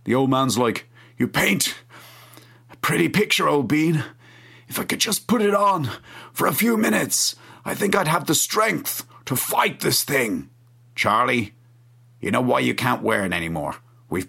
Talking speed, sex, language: 175 wpm, male, English